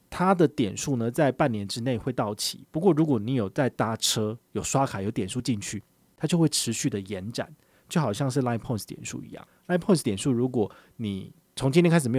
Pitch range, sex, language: 110-145 Hz, male, Chinese